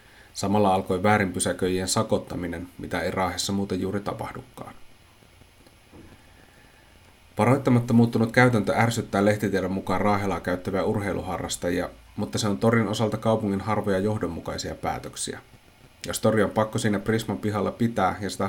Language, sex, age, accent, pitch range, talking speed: Finnish, male, 30-49, native, 95-110 Hz, 125 wpm